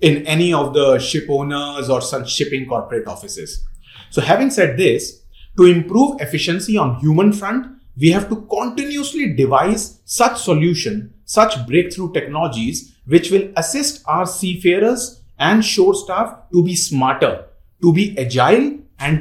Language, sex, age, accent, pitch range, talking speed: English, male, 30-49, Indian, 145-215 Hz, 145 wpm